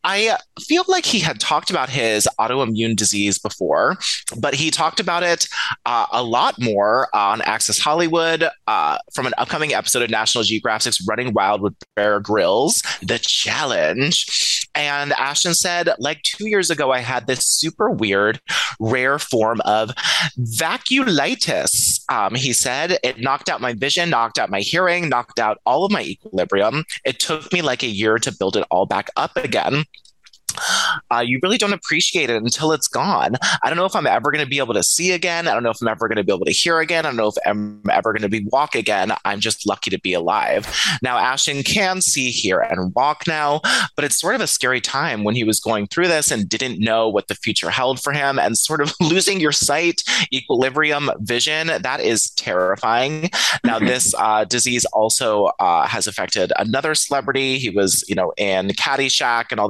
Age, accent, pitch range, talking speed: 30-49, American, 110-160 Hz, 195 wpm